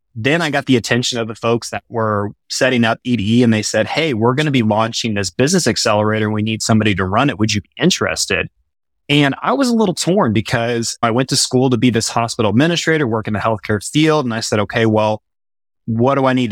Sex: male